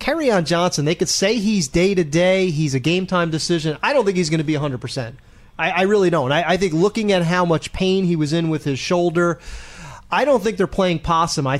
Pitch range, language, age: 150-180 Hz, English, 30-49